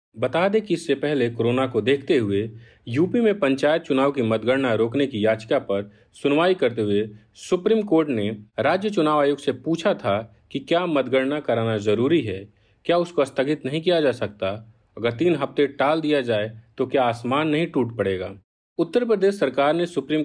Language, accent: Hindi, native